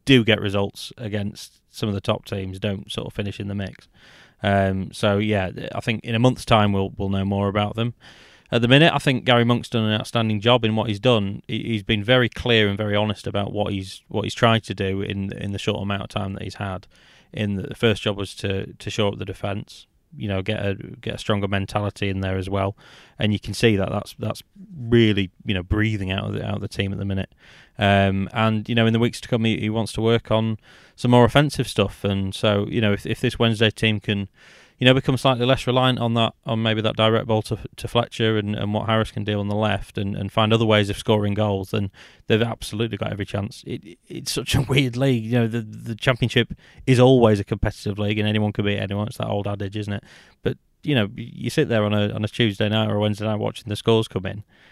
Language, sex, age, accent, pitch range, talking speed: English, male, 20-39, British, 100-115 Hz, 255 wpm